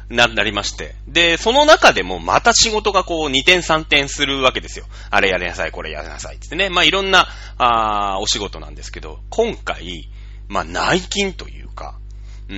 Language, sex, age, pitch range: Japanese, male, 30-49, 100-155 Hz